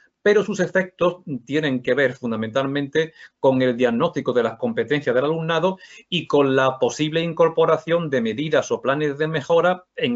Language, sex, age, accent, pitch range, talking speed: Spanish, male, 40-59, Spanish, 135-175 Hz, 160 wpm